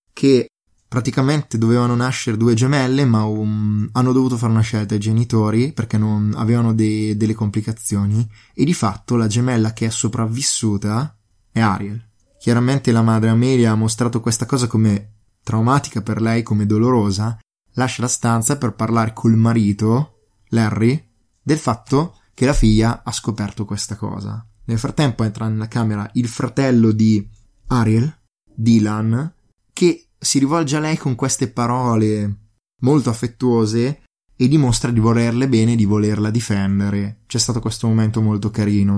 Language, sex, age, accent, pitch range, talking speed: Italian, male, 20-39, native, 110-125 Hz, 150 wpm